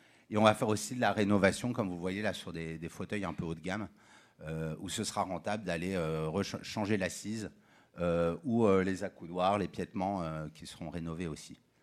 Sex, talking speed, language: male, 215 wpm, French